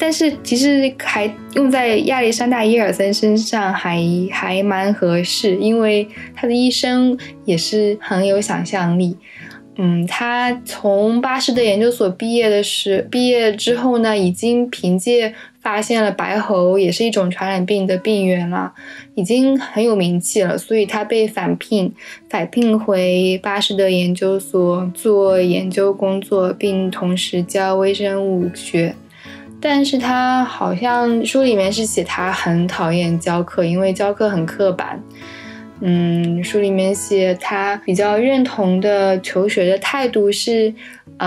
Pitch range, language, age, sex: 185-235 Hz, Chinese, 10-29, female